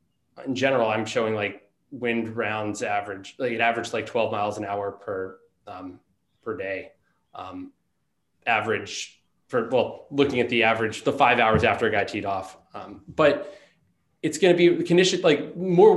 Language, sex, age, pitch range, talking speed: English, male, 20-39, 110-140 Hz, 170 wpm